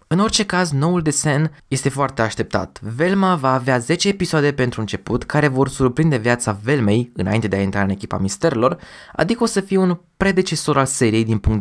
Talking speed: 190 wpm